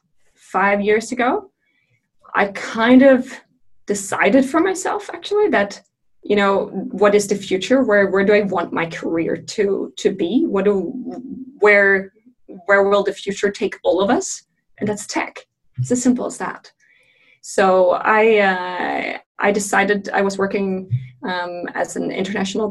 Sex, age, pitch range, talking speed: female, 20-39, 185-230 Hz, 155 wpm